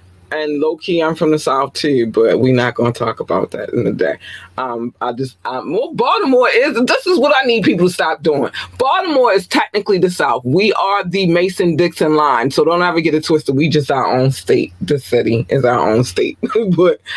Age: 20-39